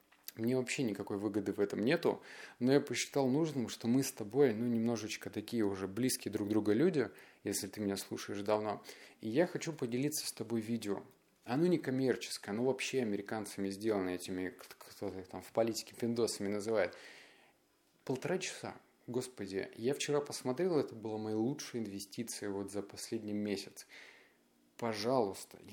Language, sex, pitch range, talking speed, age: Russian, male, 105-130 Hz, 155 wpm, 20-39